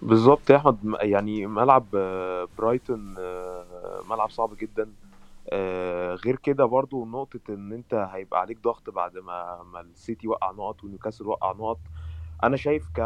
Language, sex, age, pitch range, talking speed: Arabic, male, 20-39, 100-135 Hz, 135 wpm